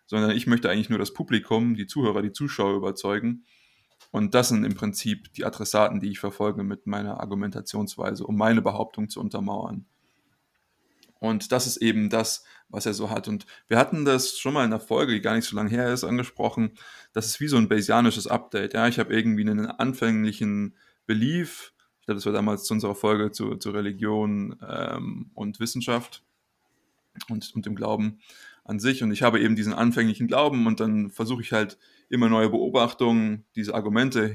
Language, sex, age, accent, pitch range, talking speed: German, male, 20-39, German, 105-120 Hz, 185 wpm